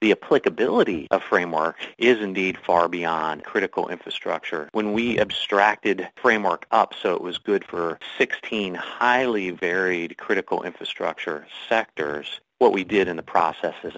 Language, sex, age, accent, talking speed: English, male, 30-49, American, 140 wpm